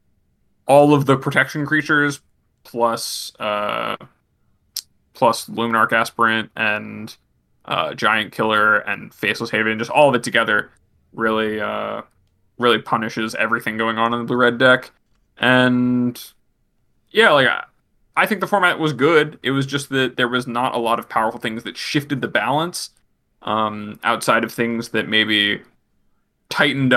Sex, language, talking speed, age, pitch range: male, English, 145 wpm, 20-39, 110-135 Hz